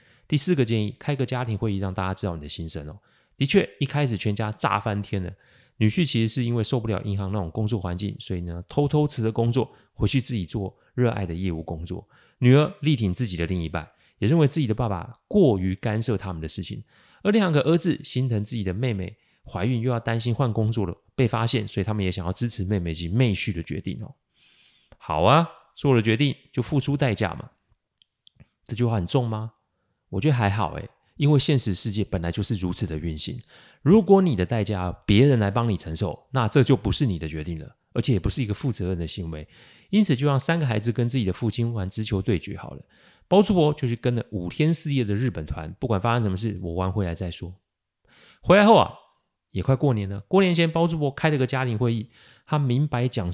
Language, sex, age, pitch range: Chinese, male, 30-49, 95-135 Hz